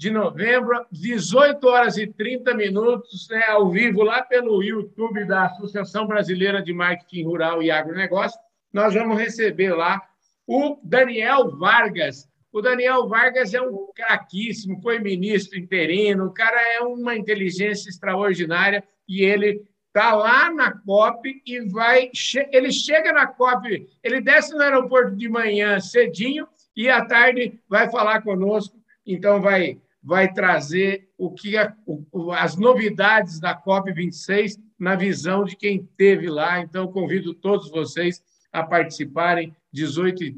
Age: 60-79